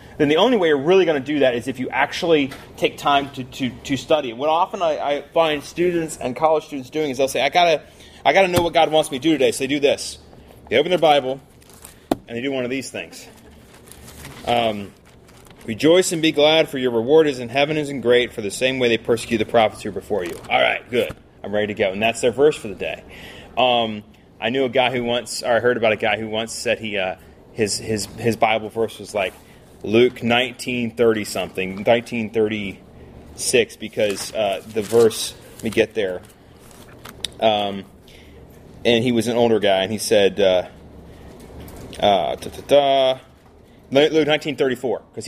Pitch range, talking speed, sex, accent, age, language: 110-145 Hz, 205 wpm, male, American, 30-49, English